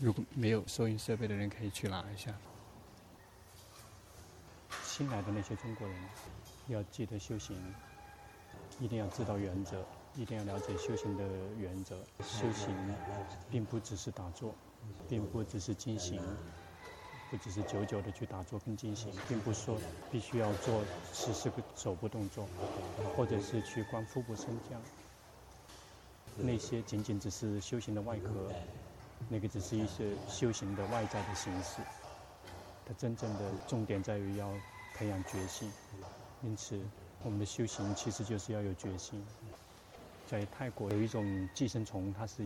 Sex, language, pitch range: male, Chinese, 95-115 Hz